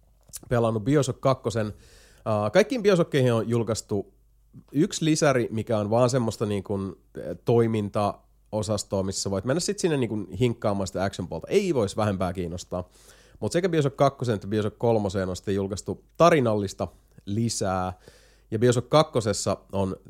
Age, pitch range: 30-49, 100-130 Hz